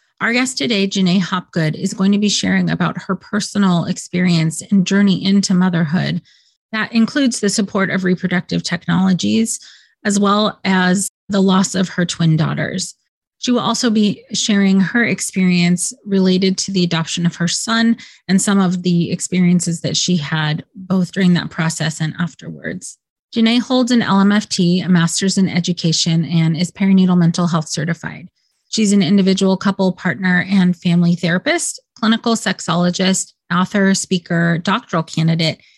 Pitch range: 180-205 Hz